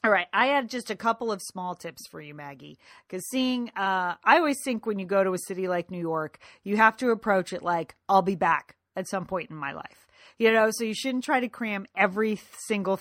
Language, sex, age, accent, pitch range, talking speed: English, female, 40-59, American, 185-235 Hz, 245 wpm